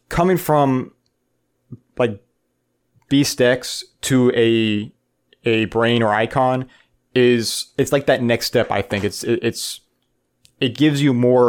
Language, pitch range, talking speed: English, 115-130 Hz, 135 wpm